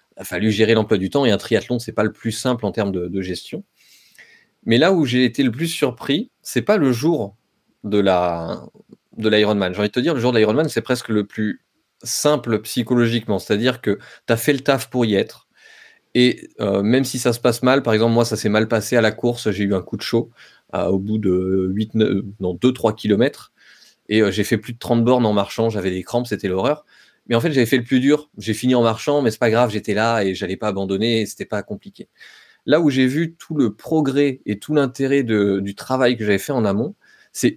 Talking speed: 245 wpm